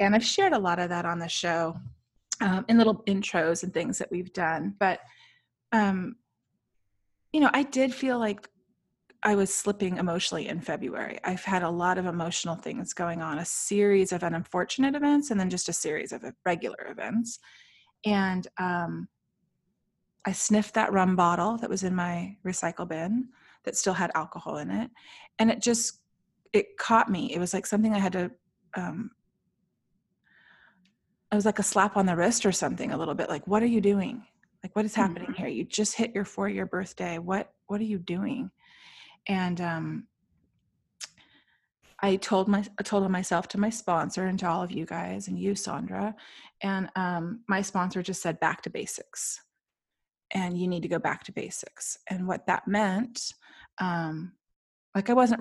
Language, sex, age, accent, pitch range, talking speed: English, female, 30-49, American, 180-220 Hz, 180 wpm